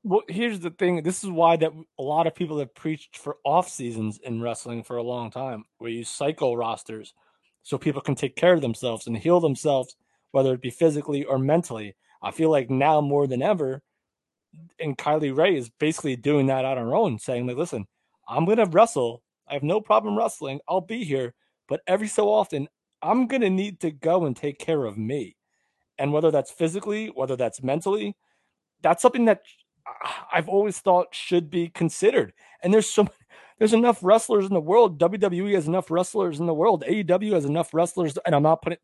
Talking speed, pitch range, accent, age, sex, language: 200 wpm, 140-200 Hz, American, 30-49, male, English